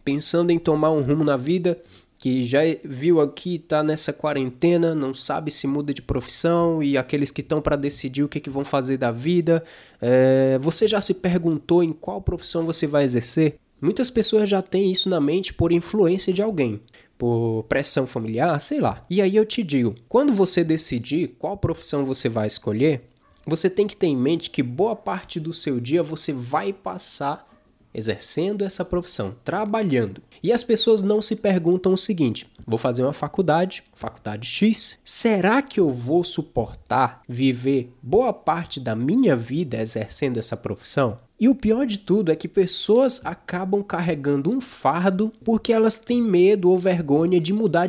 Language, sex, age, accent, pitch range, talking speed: Portuguese, male, 20-39, Brazilian, 140-185 Hz, 175 wpm